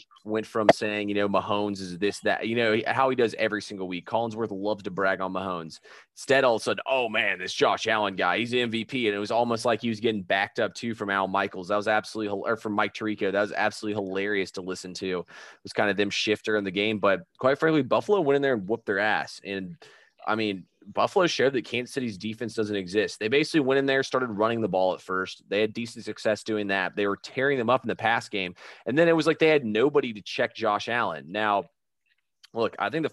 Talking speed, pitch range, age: 250 wpm, 100-115 Hz, 20-39